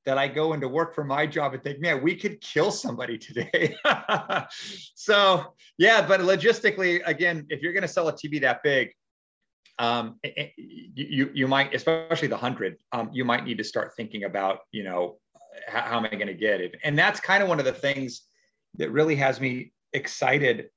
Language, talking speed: English, 195 wpm